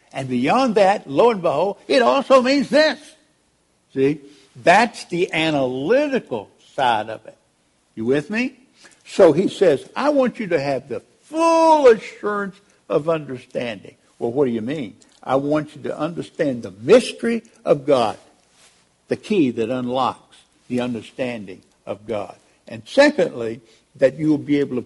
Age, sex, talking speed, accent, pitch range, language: 60-79, male, 150 wpm, American, 120-190 Hz, English